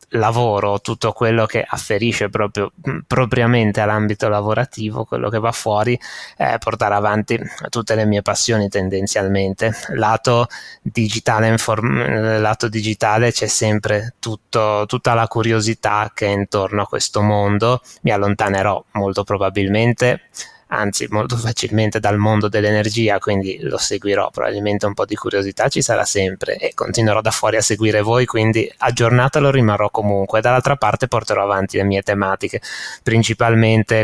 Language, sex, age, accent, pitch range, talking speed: Italian, male, 20-39, native, 105-115 Hz, 140 wpm